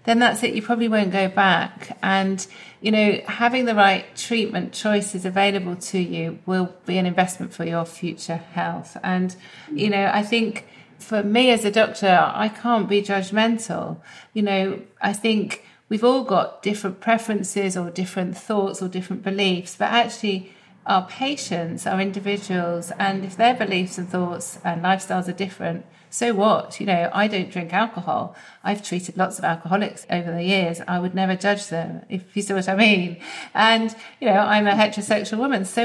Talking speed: 180 wpm